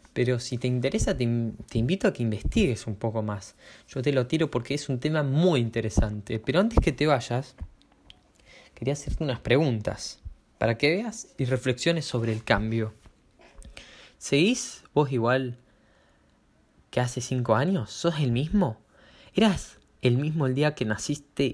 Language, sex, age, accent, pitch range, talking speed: Spanish, male, 20-39, Argentinian, 110-140 Hz, 155 wpm